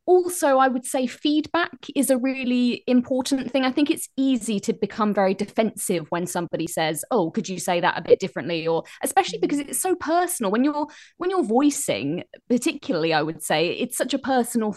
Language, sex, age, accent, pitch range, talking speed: English, female, 20-39, British, 195-265 Hz, 195 wpm